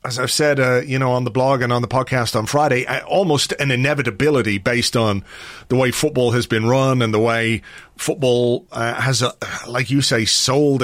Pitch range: 120-150 Hz